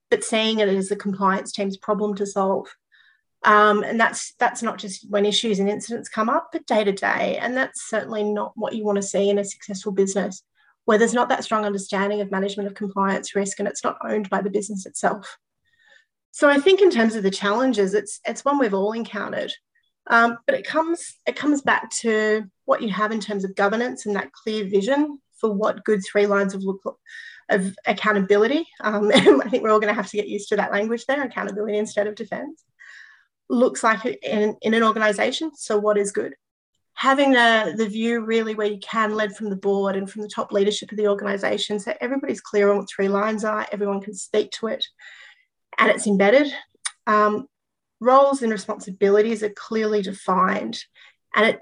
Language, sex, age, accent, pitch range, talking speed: English, female, 30-49, Australian, 200-230 Hz, 205 wpm